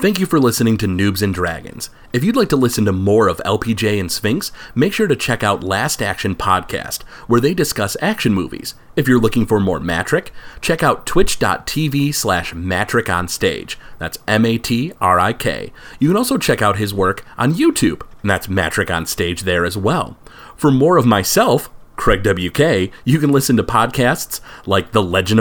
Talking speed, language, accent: 195 wpm, English, American